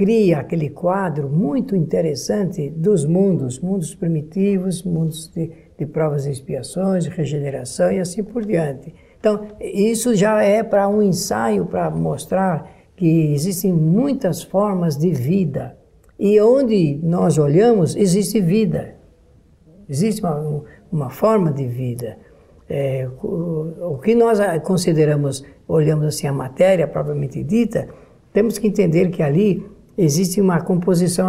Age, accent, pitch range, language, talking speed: 60-79, Brazilian, 155-205 Hz, Portuguese, 130 wpm